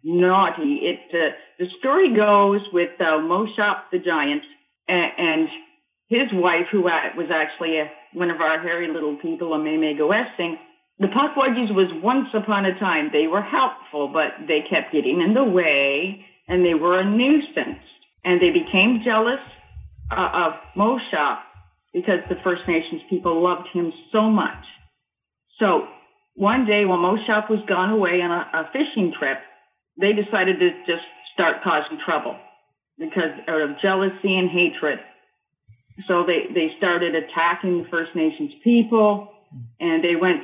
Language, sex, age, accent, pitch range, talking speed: English, female, 50-69, American, 165-215 Hz, 155 wpm